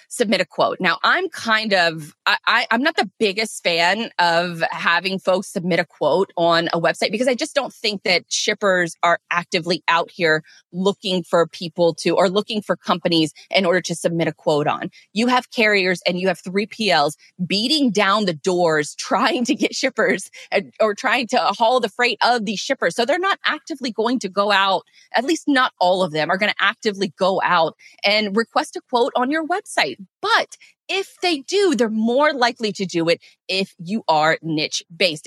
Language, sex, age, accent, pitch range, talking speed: English, female, 20-39, American, 170-230 Hz, 190 wpm